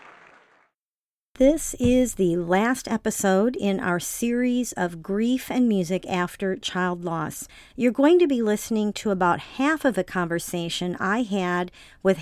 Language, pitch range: English, 180-235 Hz